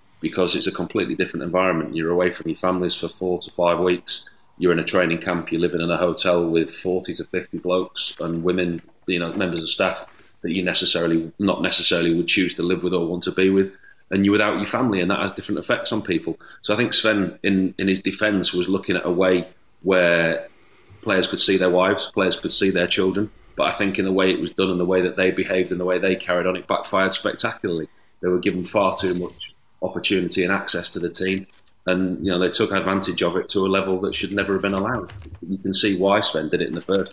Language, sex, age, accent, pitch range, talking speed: English, male, 30-49, British, 90-100 Hz, 245 wpm